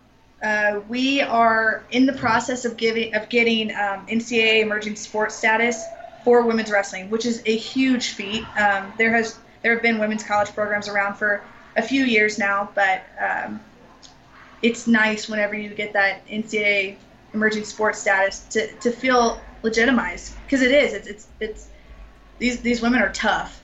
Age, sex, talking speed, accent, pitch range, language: 20-39, female, 165 wpm, American, 205-230 Hz, English